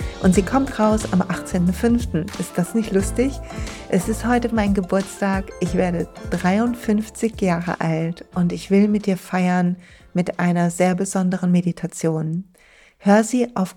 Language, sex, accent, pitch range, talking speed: German, female, German, 170-195 Hz, 150 wpm